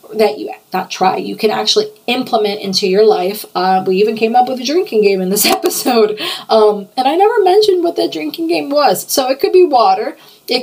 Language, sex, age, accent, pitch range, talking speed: English, female, 30-49, American, 190-245 Hz, 220 wpm